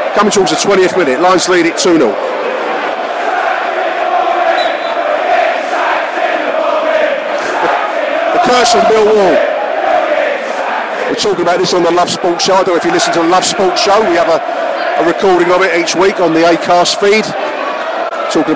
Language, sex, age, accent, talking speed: English, male, 40-59, British, 155 wpm